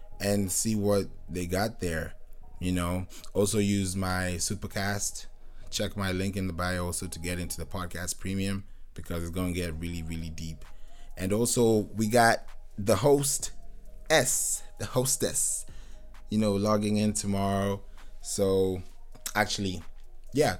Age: 20-39